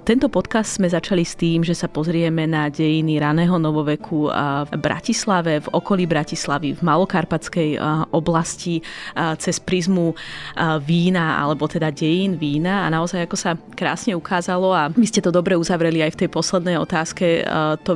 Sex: female